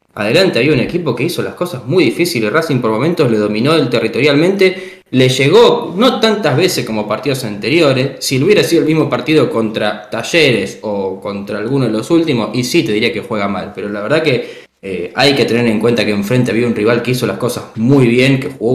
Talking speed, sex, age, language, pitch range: 225 wpm, male, 10-29, Spanish, 115-145 Hz